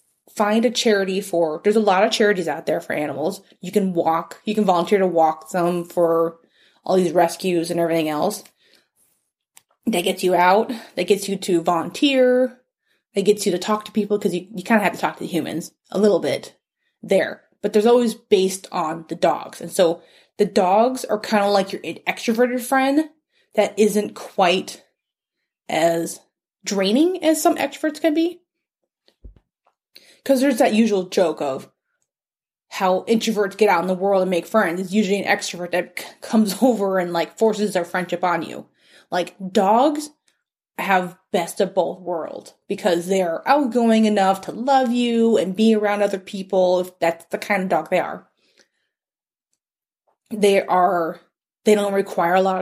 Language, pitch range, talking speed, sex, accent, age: English, 180-225 Hz, 170 wpm, female, American, 20-39